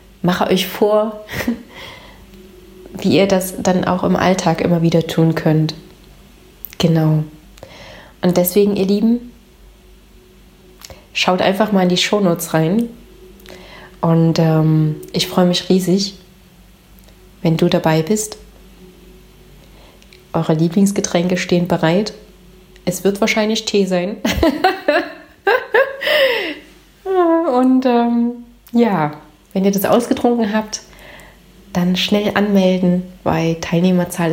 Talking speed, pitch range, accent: 100 wpm, 170-215 Hz, German